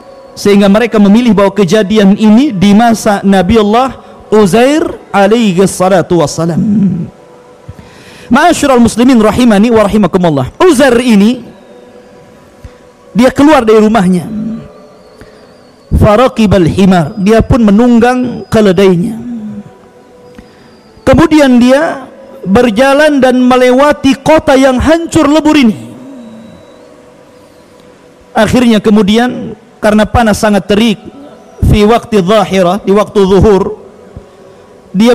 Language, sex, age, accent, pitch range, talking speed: Indonesian, male, 40-59, native, 205-250 Hz, 85 wpm